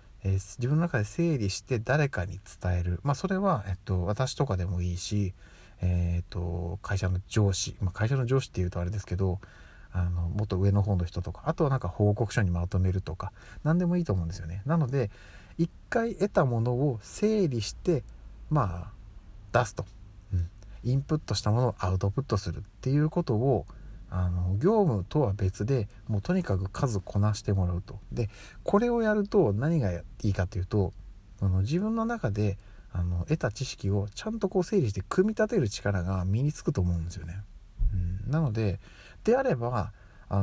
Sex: male